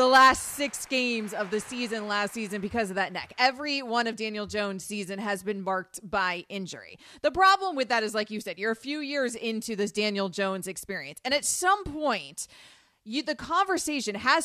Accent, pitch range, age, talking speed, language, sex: American, 210-275 Hz, 30-49, 200 wpm, English, female